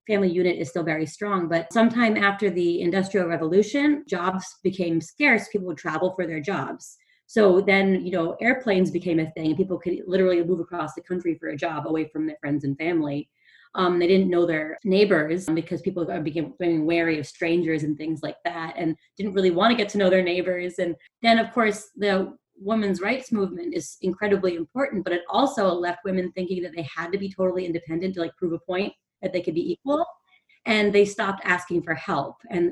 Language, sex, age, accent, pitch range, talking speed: English, female, 30-49, American, 165-200 Hz, 205 wpm